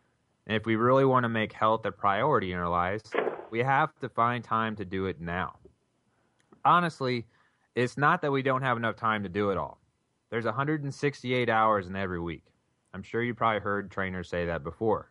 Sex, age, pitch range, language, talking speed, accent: male, 30-49, 95-120 Hz, English, 200 wpm, American